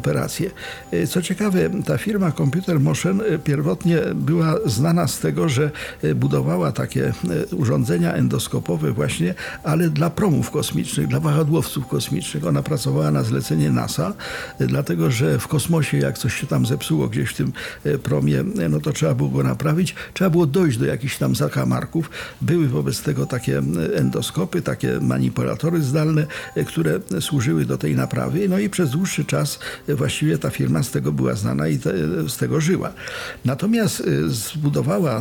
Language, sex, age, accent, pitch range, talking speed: Polish, male, 50-69, native, 105-165 Hz, 150 wpm